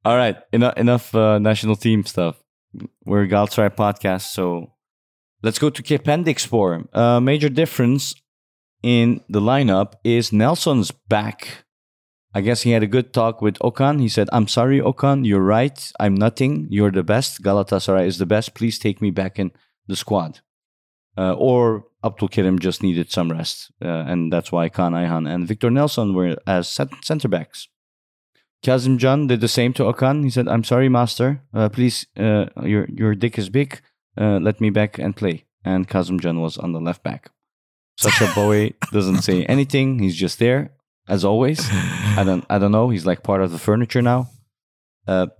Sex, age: male, 30-49